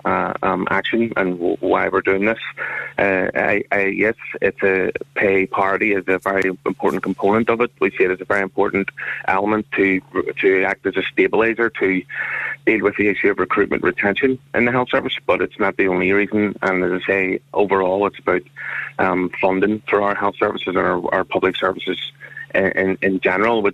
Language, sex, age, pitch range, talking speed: English, male, 30-49, 95-110 Hz, 200 wpm